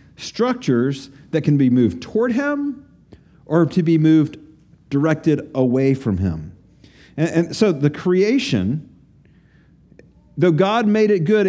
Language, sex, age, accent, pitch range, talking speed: English, male, 50-69, American, 135-190 Hz, 130 wpm